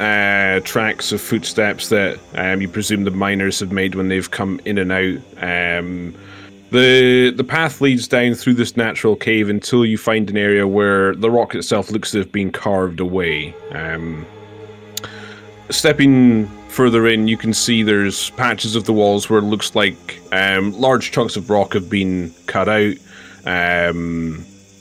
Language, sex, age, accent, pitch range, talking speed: English, male, 20-39, British, 95-120 Hz, 165 wpm